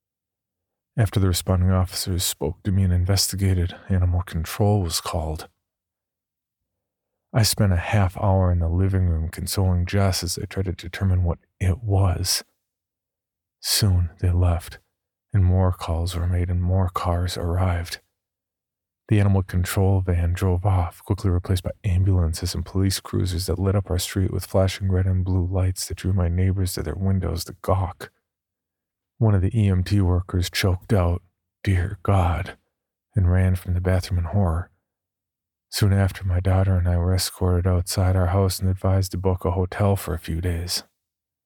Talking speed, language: 165 wpm, English